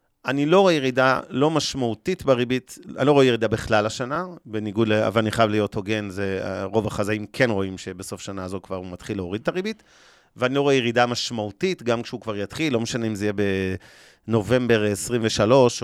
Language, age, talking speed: Hebrew, 30-49, 190 wpm